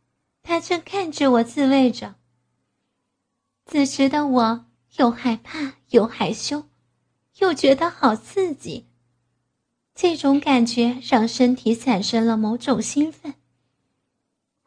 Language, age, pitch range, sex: Chinese, 20-39, 210-285 Hz, female